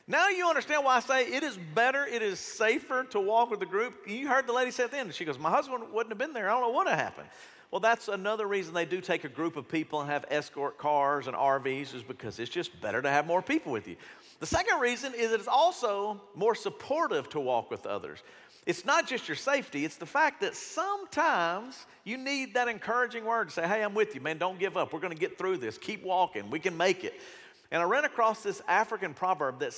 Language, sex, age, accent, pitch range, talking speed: English, male, 50-69, American, 175-255 Hz, 255 wpm